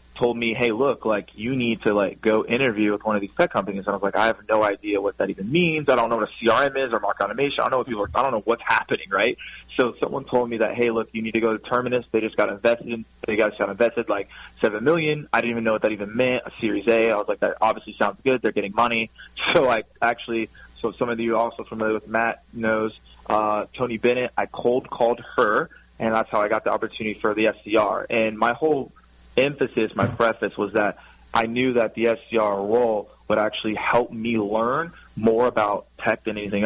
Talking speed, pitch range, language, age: 245 wpm, 105-120 Hz, English, 20-39